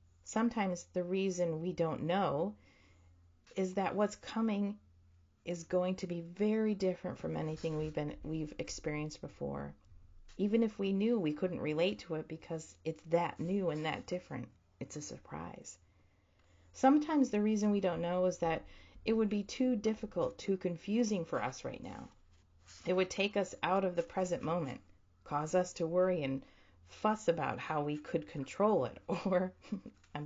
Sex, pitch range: female, 130-190 Hz